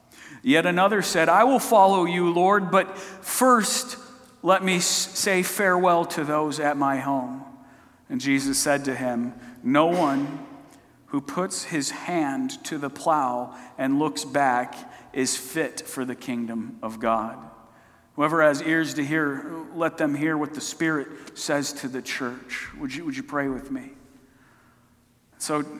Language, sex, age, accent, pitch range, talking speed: English, male, 50-69, American, 125-165 Hz, 155 wpm